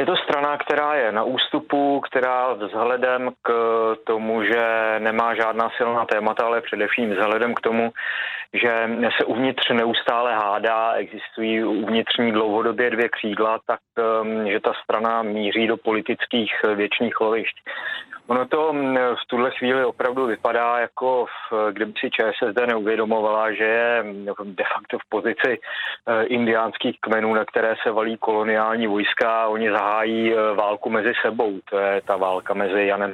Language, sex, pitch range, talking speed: Czech, male, 110-120 Hz, 140 wpm